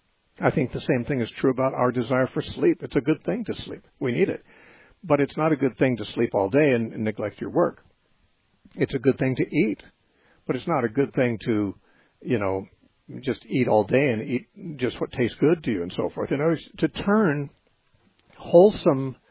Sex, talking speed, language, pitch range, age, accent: male, 225 wpm, English, 115-150 Hz, 60-79, American